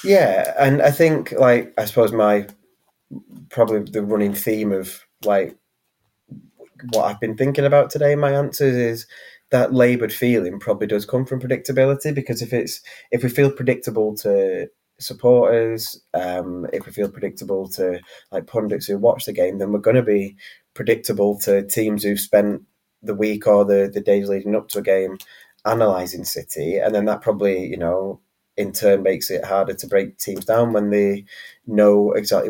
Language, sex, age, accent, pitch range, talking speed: English, male, 20-39, British, 100-120 Hz, 175 wpm